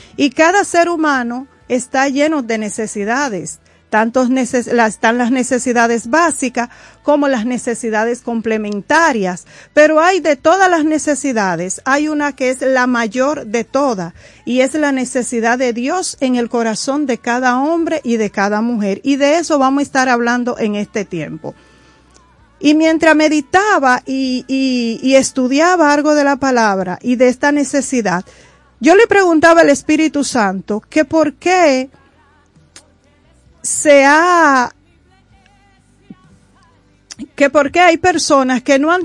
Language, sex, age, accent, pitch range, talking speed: Spanish, female, 40-59, American, 240-310 Hz, 140 wpm